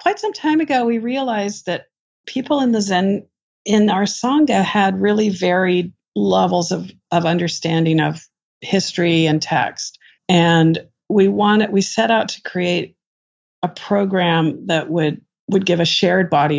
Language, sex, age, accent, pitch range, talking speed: English, female, 50-69, American, 155-195 Hz, 150 wpm